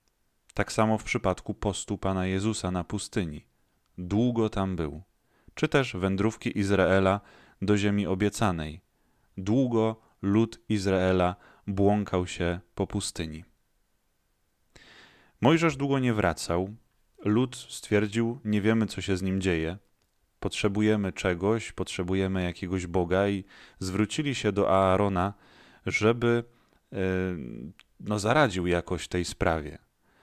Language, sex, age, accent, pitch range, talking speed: Polish, male, 30-49, native, 95-110 Hz, 105 wpm